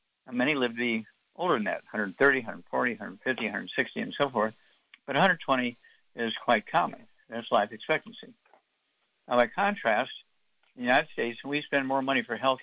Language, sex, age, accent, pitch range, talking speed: English, male, 60-79, American, 115-145 Hz, 165 wpm